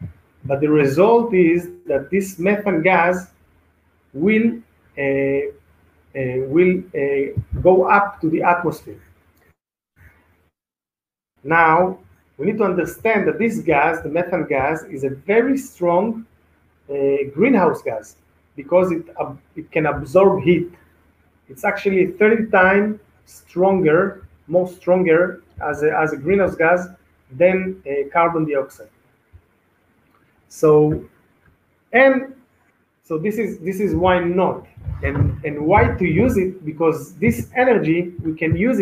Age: 40-59